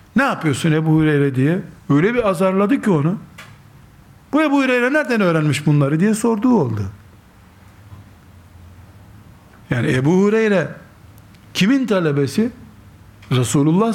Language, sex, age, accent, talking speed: Turkish, male, 60-79, native, 110 wpm